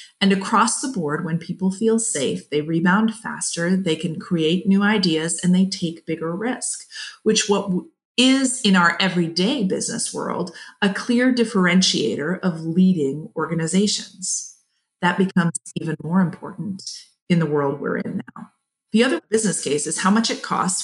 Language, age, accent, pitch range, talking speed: English, 40-59, American, 170-210 Hz, 160 wpm